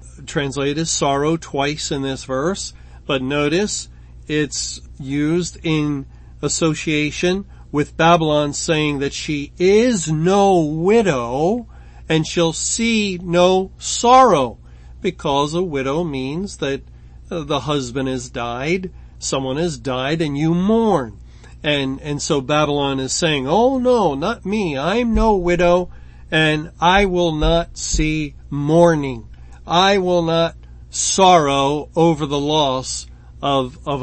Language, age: English, 40-59